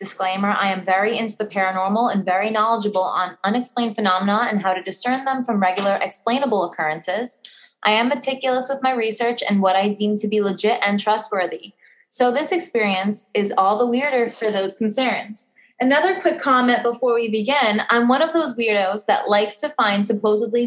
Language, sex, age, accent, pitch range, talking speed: English, female, 20-39, American, 200-255 Hz, 185 wpm